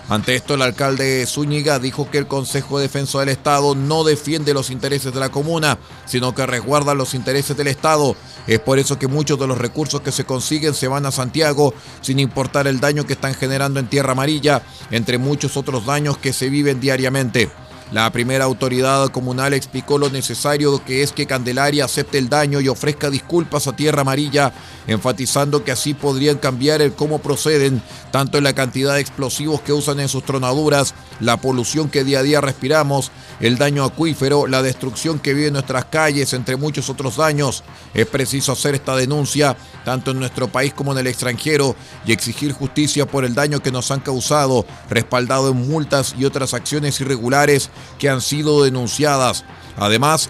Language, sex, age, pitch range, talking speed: Spanish, male, 30-49, 130-145 Hz, 185 wpm